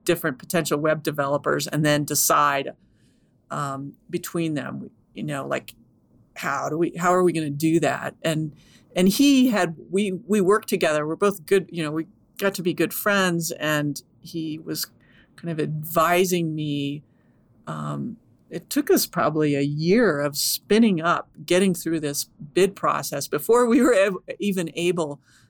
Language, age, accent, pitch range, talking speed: English, 50-69, American, 145-185 Hz, 160 wpm